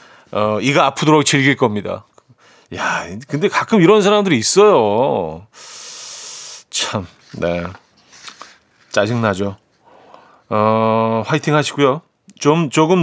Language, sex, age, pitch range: Korean, male, 40-59, 105-150 Hz